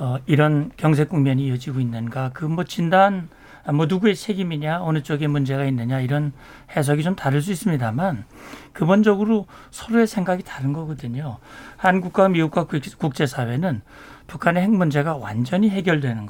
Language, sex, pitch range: Korean, male, 140-190 Hz